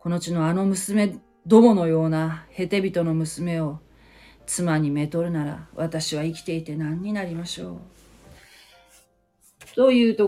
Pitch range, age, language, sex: 145-180 Hz, 40-59, Japanese, female